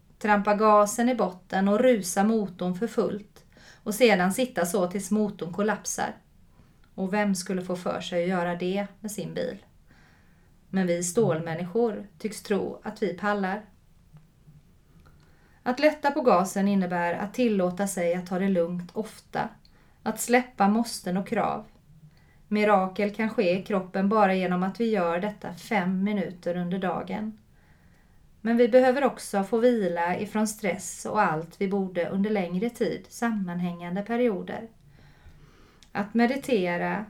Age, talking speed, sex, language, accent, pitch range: 30-49, 140 wpm, female, Swedish, native, 185-220 Hz